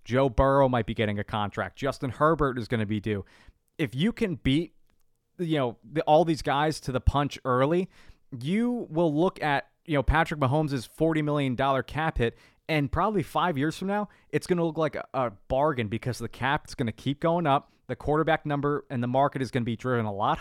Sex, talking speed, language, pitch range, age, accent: male, 220 wpm, English, 120-155 Hz, 20-39, American